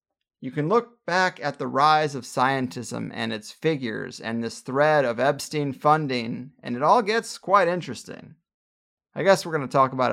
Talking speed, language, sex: 185 wpm, English, male